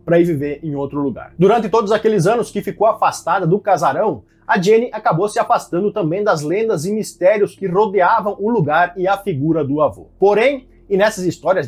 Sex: male